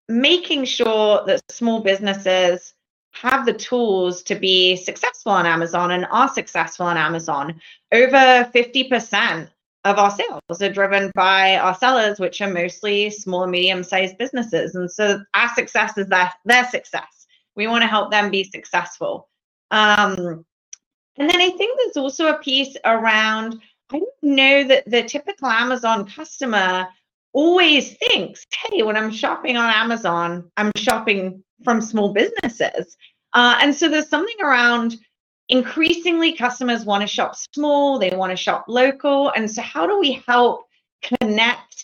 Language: English